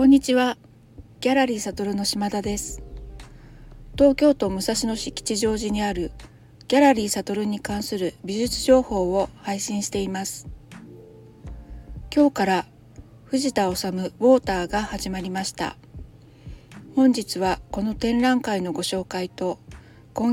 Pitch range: 180-235 Hz